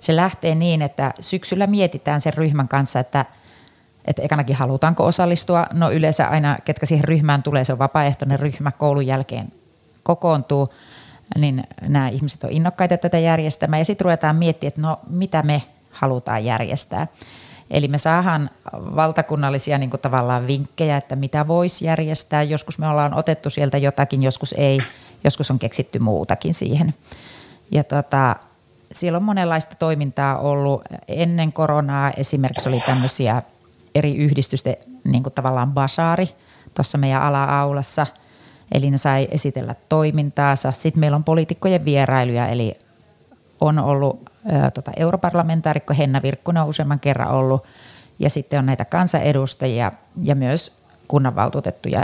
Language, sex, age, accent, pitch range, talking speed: Finnish, female, 30-49, native, 135-160 Hz, 140 wpm